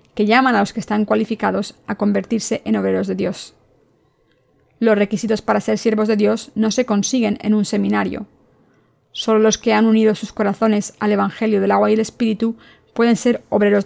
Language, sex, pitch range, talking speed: Spanish, female, 205-230 Hz, 185 wpm